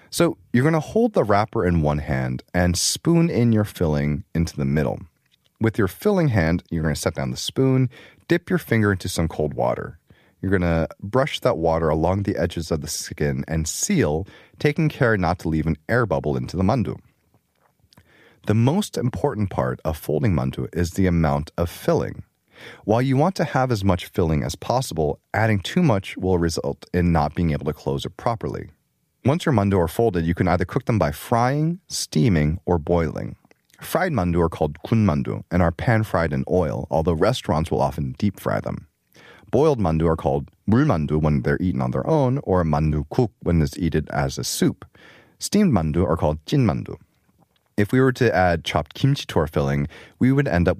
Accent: American